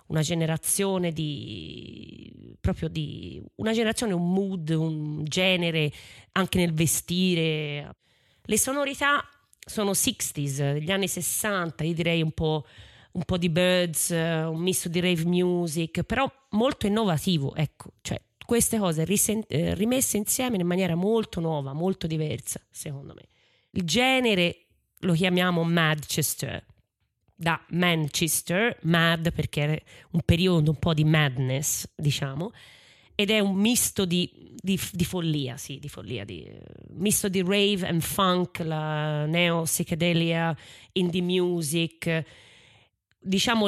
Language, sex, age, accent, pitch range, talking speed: Italian, female, 30-49, native, 155-190 Hz, 125 wpm